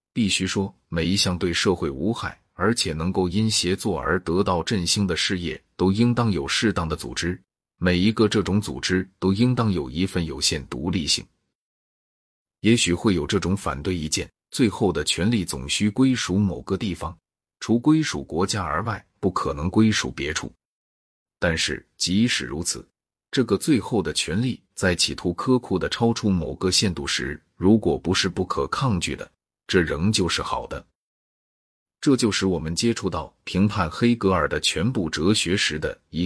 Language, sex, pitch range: Chinese, male, 85-105 Hz